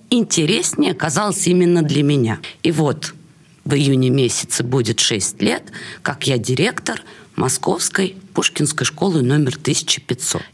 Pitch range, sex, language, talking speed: 145-210 Hz, female, Russian, 120 wpm